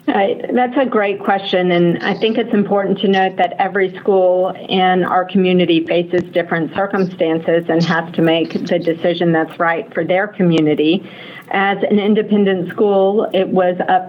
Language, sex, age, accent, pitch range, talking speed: English, female, 50-69, American, 170-195 Hz, 165 wpm